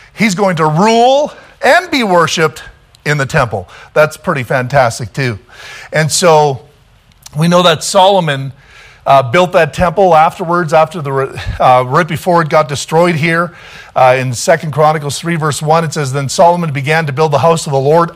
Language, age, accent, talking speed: English, 40-59, American, 175 wpm